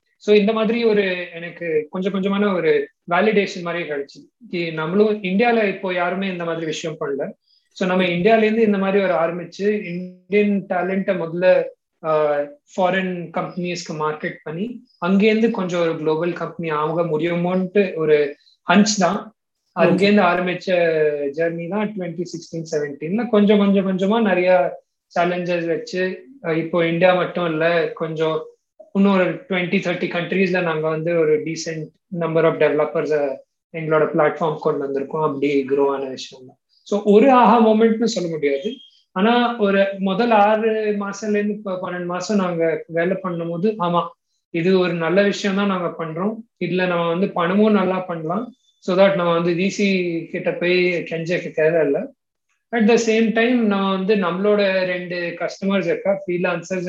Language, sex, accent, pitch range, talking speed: Tamil, male, native, 165-205 Hz, 135 wpm